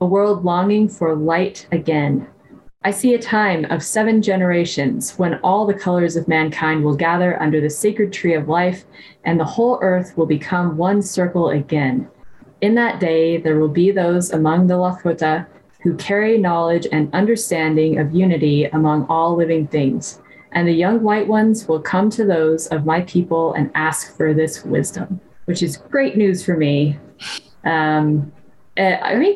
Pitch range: 155-190 Hz